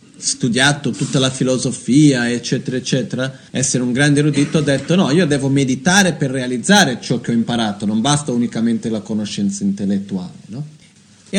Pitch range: 130-180 Hz